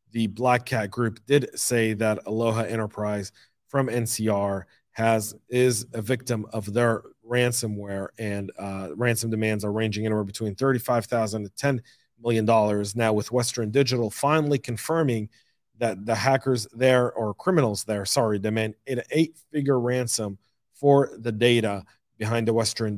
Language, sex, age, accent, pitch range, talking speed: English, male, 40-59, American, 110-125 Hz, 140 wpm